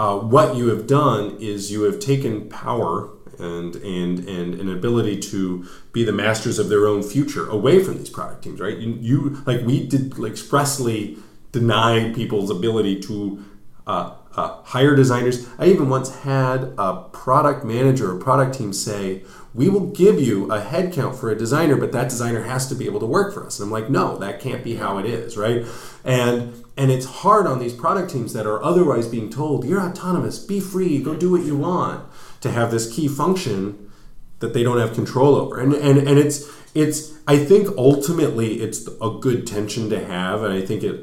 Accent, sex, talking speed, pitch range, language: American, male, 200 wpm, 105-140 Hz, English